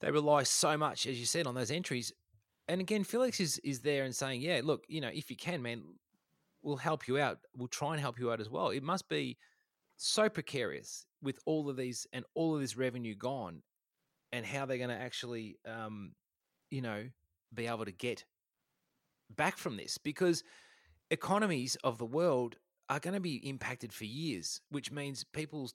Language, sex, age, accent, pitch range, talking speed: English, male, 30-49, Australian, 120-155 Hz, 195 wpm